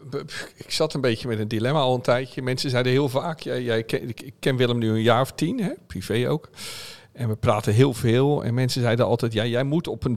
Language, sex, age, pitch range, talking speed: Dutch, male, 50-69, 110-145 Hz, 240 wpm